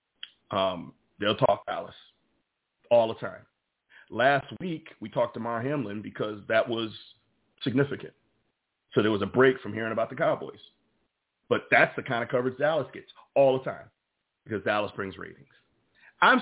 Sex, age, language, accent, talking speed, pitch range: male, 40-59, English, American, 160 wpm, 115-155 Hz